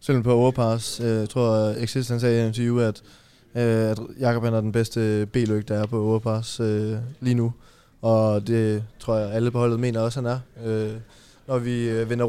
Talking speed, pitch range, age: 175 wpm, 110-120 Hz, 20-39